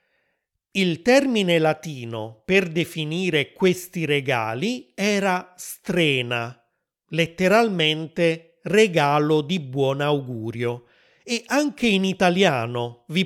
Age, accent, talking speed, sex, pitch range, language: 30-49, native, 85 wpm, male, 140-195 Hz, Italian